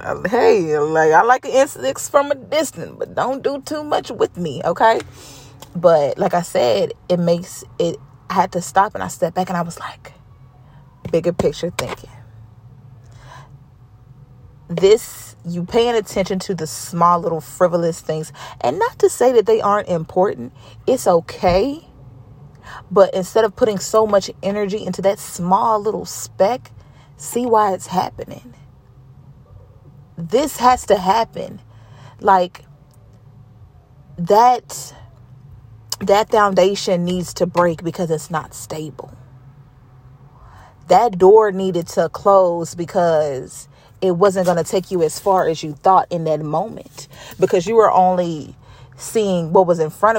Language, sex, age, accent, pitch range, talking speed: English, female, 30-49, American, 135-195 Hz, 140 wpm